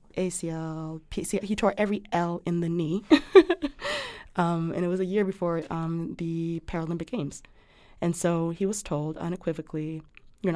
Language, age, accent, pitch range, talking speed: English, 20-39, American, 155-185 Hz, 150 wpm